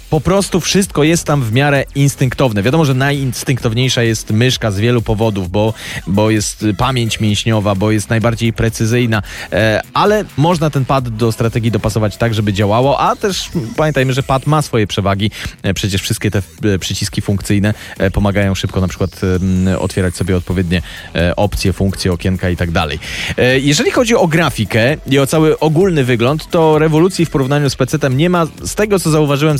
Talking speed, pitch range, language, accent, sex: 170 wpm, 105-145 Hz, Polish, native, male